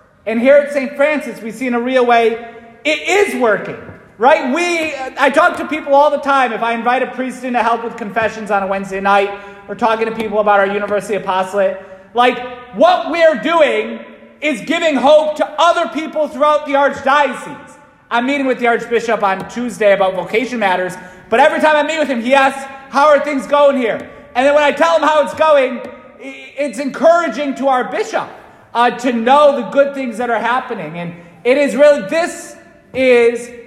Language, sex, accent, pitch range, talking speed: English, male, American, 205-280 Hz, 200 wpm